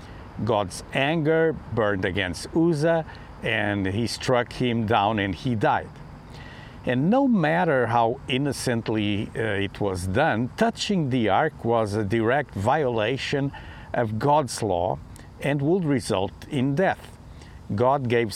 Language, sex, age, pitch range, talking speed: English, male, 50-69, 105-145 Hz, 130 wpm